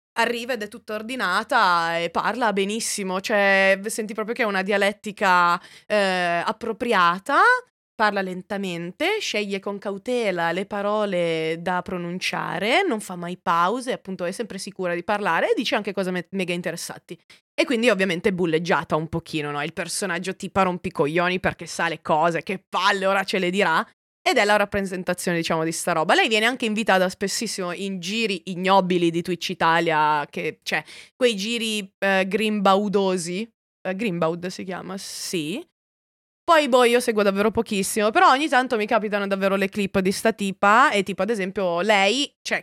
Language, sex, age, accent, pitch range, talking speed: Italian, female, 20-39, native, 180-220 Hz, 170 wpm